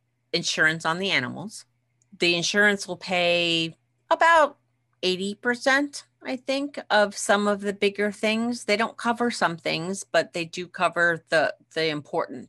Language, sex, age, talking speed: English, female, 40-59, 145 wpm